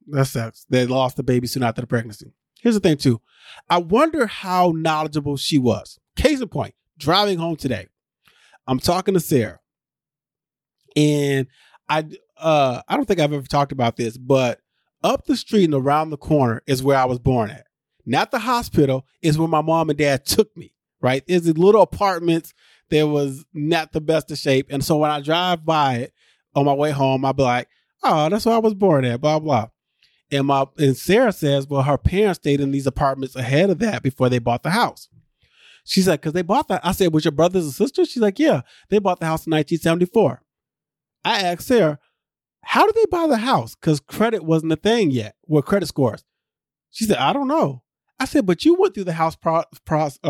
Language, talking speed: English, 210 wpm